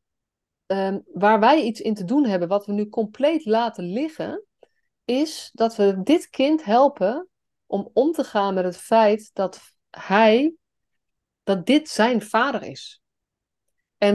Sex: female